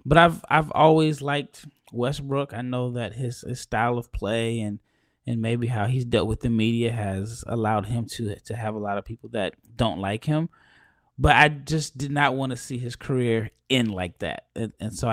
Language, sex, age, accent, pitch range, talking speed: English, male, 20-39, American, 110-145 Hz, 210 wpm